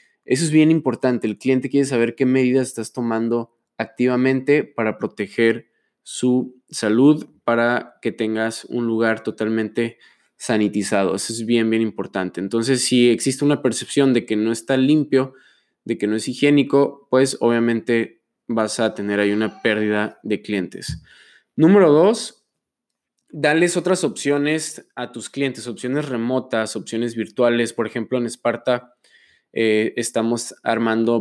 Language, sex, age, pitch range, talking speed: Spanish, male, 20-39, 110-130 Hz, 140 wpm